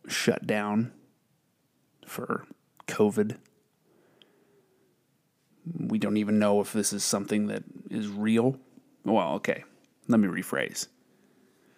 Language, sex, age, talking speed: English, male, 30-49, 100 wpm